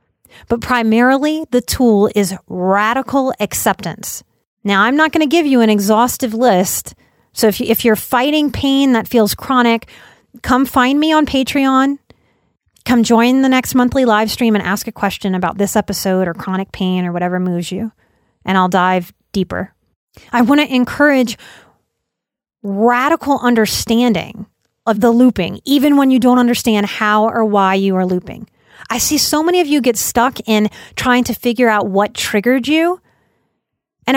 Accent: American